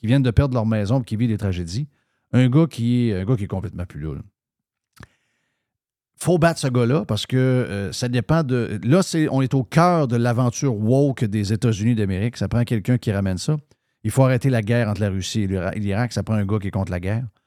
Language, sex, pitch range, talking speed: French, male, 110-140 Hz, 235 wpm